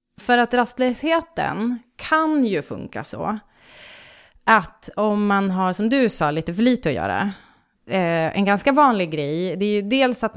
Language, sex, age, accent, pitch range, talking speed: English, female, 30-49, Swedish, 160-205 Hz, 170 wpm